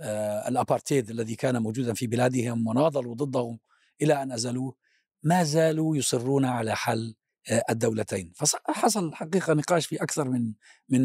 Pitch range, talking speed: 125-170 Hz, 140 wpm